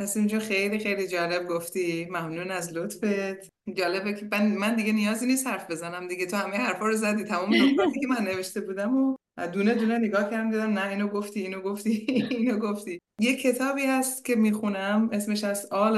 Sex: female